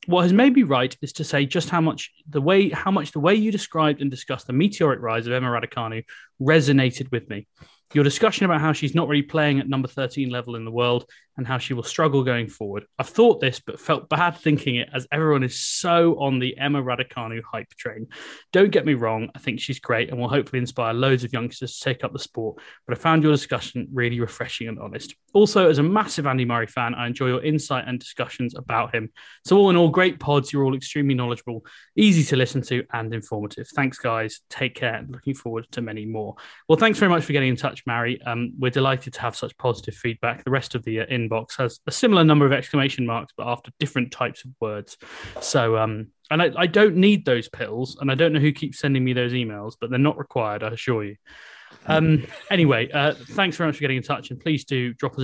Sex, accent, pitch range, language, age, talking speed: male, British, 120-155 Hz, English, 20-39, 235 wpm